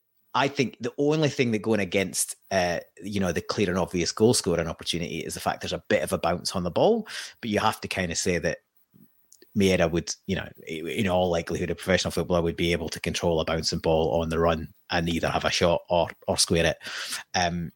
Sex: male